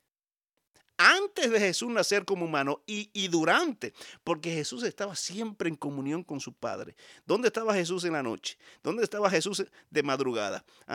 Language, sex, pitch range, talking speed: Spanish, male, 135-200 Hz, 160 wpm